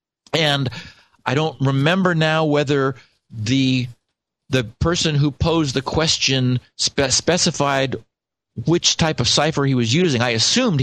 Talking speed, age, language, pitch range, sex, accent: 135 wpm, 50-69, English, 125-165 Hz, male, American